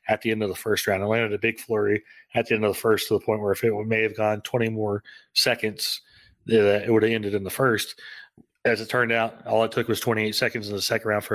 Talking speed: 275 wpm